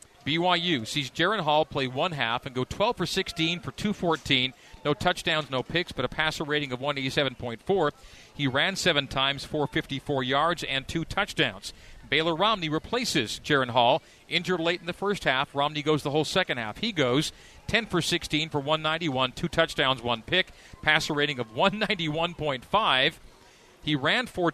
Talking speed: 165 wpm